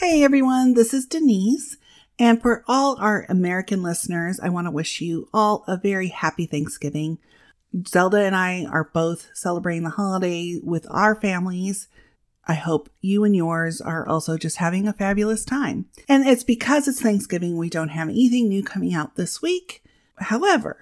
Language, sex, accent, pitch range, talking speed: English, female, American, 165-220 Hz, 170 wpm